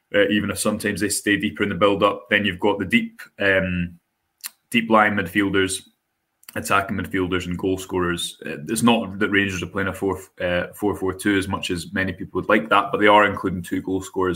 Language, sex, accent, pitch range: English, male, British, 95-100 Hz